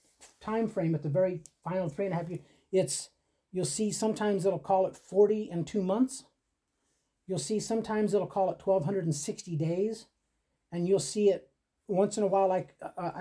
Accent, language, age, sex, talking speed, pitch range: American, English, 40-59, male, 195 wpm, 155-195 Hz